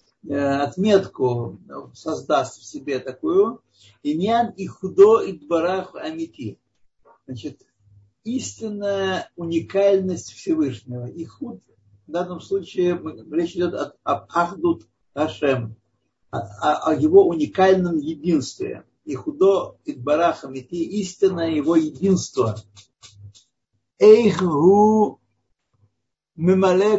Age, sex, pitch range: 60-79, male, 130-200 Hz